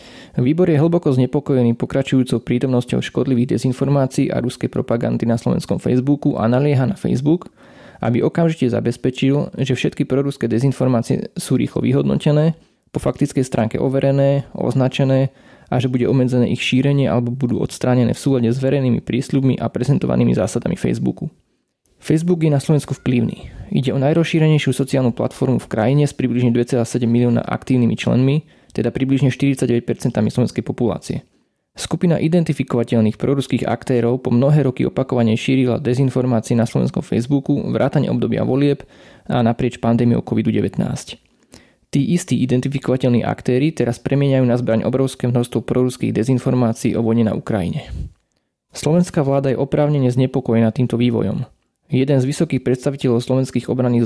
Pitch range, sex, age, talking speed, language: 120-140 Hz, male, 20-39, 135 wpm, Slovak